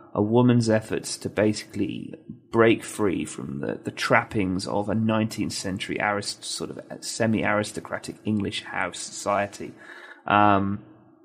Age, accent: 30-49, British